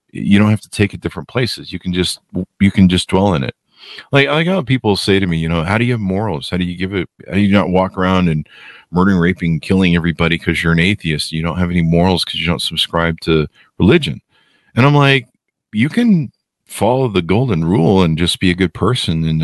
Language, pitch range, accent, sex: English, 80-95 Hz, American, male